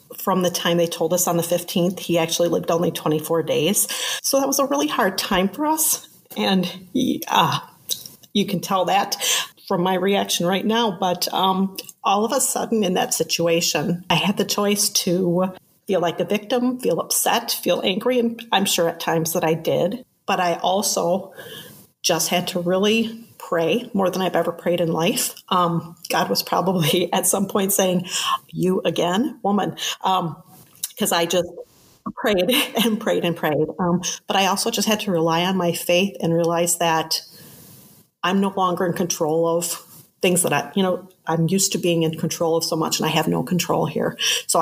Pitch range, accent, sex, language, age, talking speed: 170-200 Hz, American, female, English, 40-59, 190 wpm